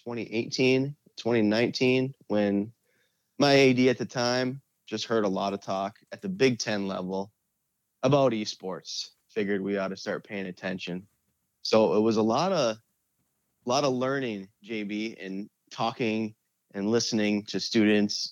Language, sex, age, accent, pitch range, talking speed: English, male, 20-39, American, 100-125 Hz, 145 wpm